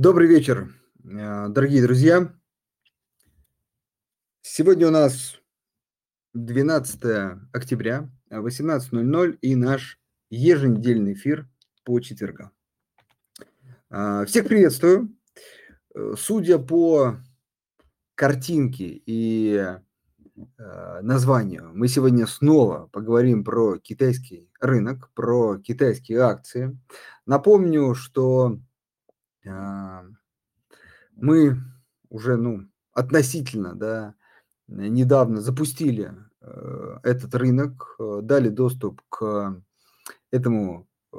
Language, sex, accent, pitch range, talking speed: Russian, male, native, 110-145 Hz, 70 wpm